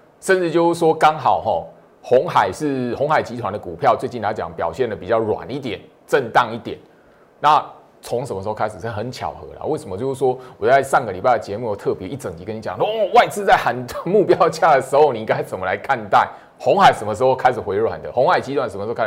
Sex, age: male, 20-39